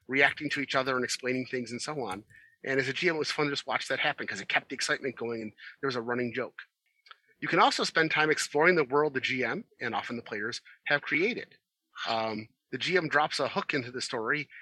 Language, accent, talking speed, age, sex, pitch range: English, American, 240 wpm, 30-49, male, 125-150 Hz